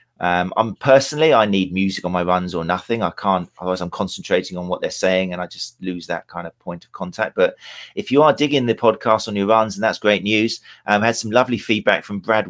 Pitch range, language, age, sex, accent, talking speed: 90-105 Hz, English, 40-59, male, British, 250 wpm